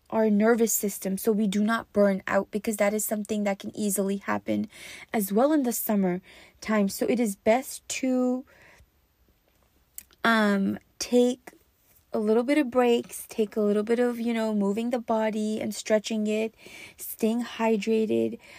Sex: female